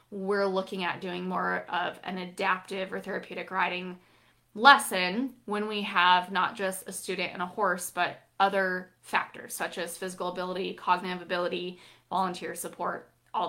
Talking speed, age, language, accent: 150 wpm, 20-39, English, American